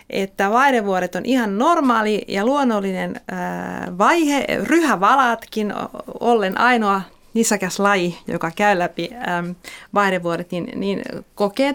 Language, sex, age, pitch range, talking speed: Finnish, female, 30-49, 190-255 Hz, 100 wpm